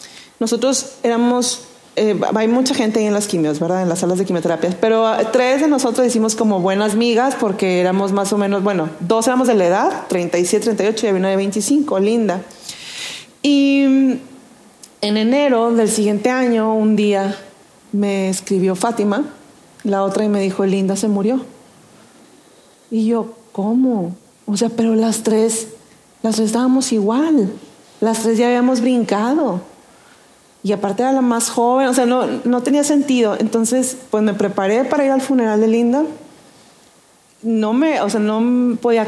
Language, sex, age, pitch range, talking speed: Spanish, female, 30-49, 205-255 Hz, 165 wpm